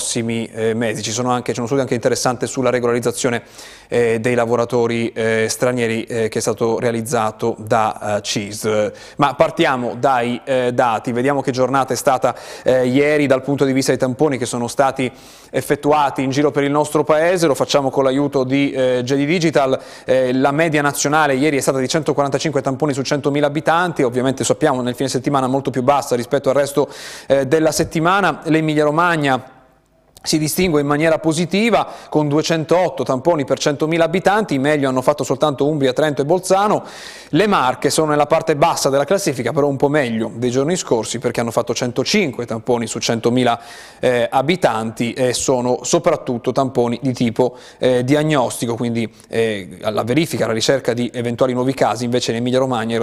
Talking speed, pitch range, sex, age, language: 175 wpm, 120-150 Hz, male, 30-49, Italian